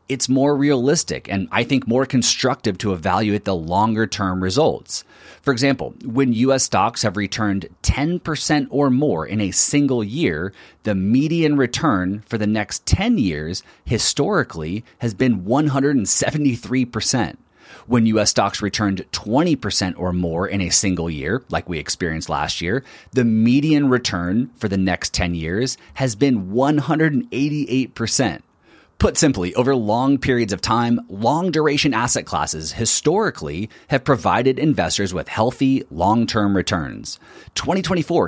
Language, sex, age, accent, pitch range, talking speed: English, male, 30-49, American, 100-140 Hz, 135 wpm